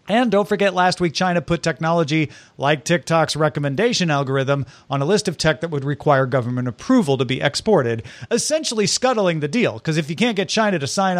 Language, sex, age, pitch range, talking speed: English, male, 40-59, 140-175 Hz, 200 wpm